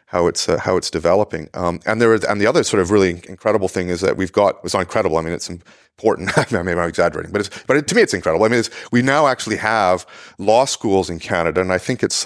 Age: 30-49